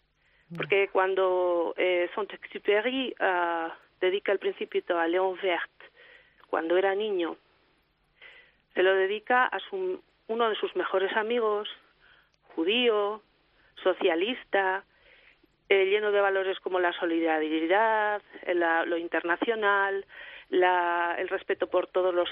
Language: Spanish